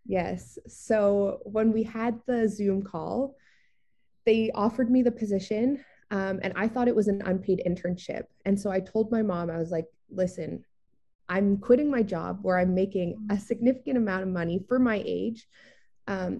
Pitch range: 180-230 Hz